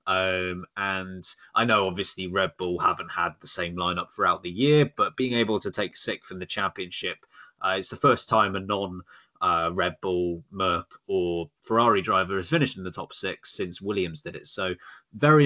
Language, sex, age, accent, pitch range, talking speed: English, male, 20-39, British, 95-130 Hz, 195 wpm